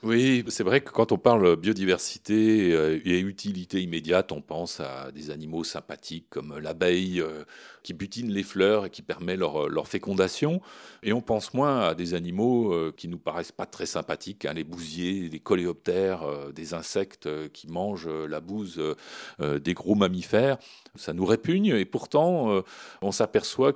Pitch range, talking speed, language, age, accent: 90-135 Hz, 160 wpm, French, 40-59, French